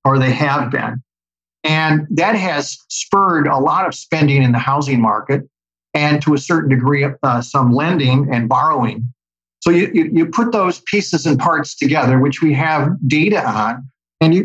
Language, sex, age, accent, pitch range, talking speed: English, male, 50-69, American, 130-165 Hz, 170 wpm